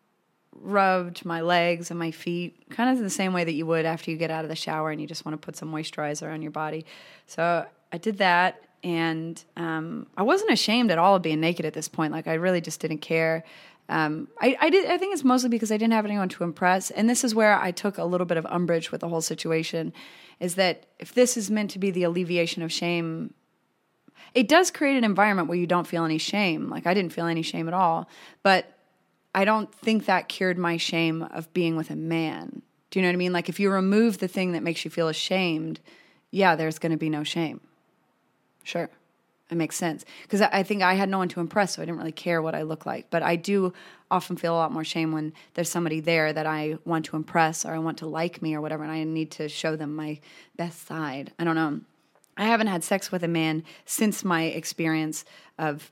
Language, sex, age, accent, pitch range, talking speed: English, female, 30-49, American, 160-190 Hz, 240 wpm